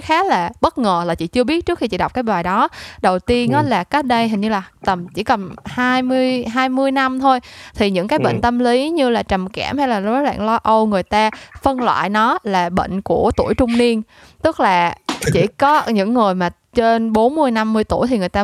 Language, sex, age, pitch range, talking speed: Vietnamese, female, 20-39, 195-255 Hz, 235 wpm